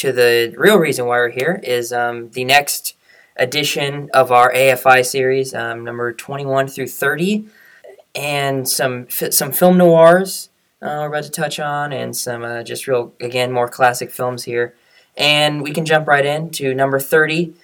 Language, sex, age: English, male, 10-29